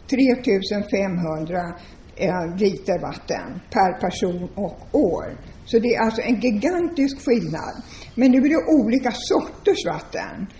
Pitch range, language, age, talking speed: 190-240 Hz, Swedish, 60-79, 120 wpm